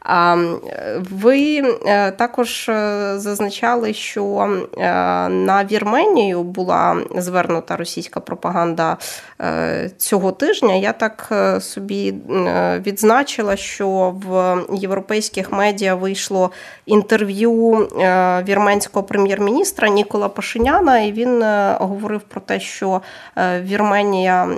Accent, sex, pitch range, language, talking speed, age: native, female, 170-210 Hz, Ukrainian, 80 wpm, 20-39